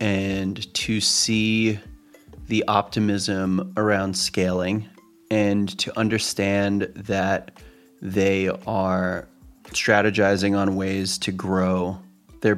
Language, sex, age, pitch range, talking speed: English, male, 30-49, 95-115 Hz, 90 wpm